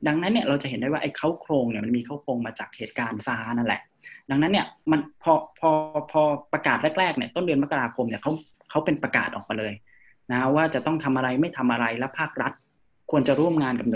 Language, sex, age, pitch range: Thai, male, 20-39, 115-145 Hz